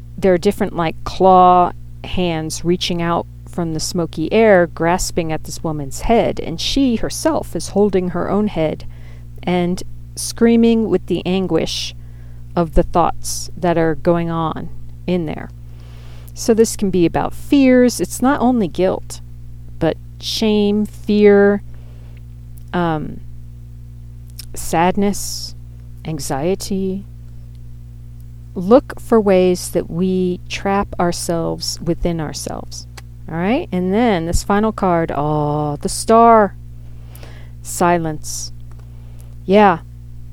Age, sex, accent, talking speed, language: 40-59, female, American, 115 wpm, English